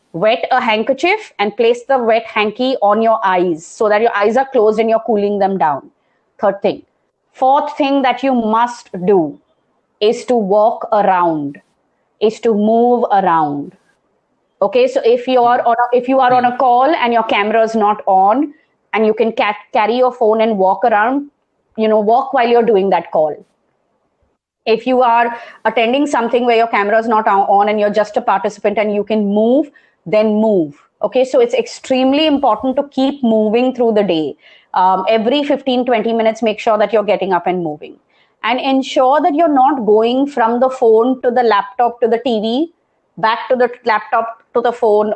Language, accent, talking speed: English, Indian, 190 wpm